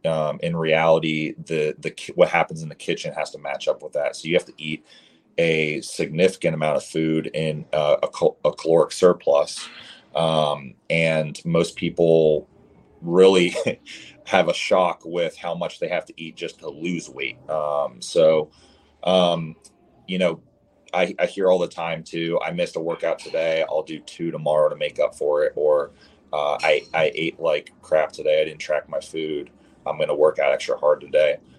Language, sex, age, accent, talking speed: English, male, 30-49, American, 190 wpm